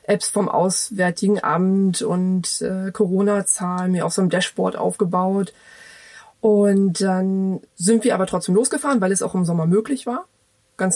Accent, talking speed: German, 160 wpm